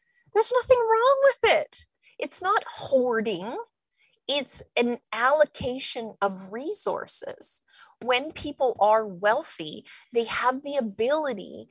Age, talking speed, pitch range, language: 30-49, 110 wpm, 195-285 Hz, English